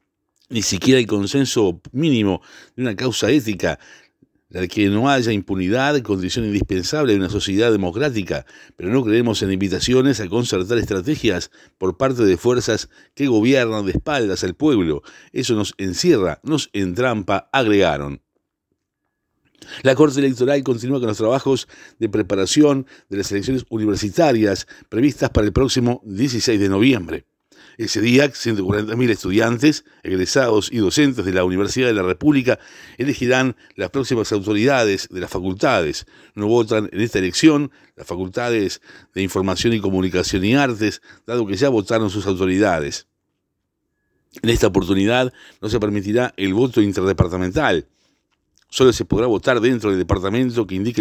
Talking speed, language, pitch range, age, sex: 140 wpm, Spanish, 100-130 Hz, 60-79, male